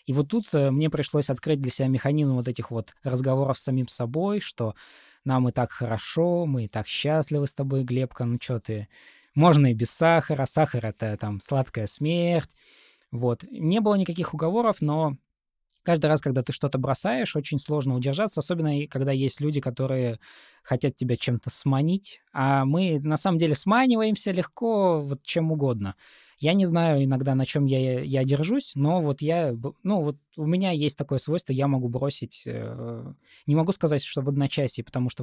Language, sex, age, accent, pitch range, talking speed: Russian, male, 20-39, native, 125-160 Hz, 175 wpm